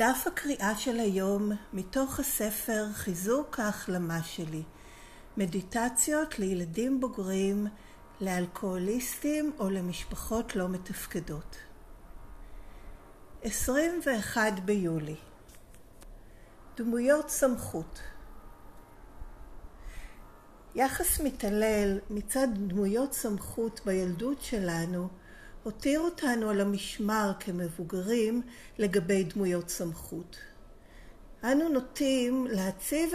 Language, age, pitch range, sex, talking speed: Hebrew, 50-69, 180-240 Hz, female, 70 wpm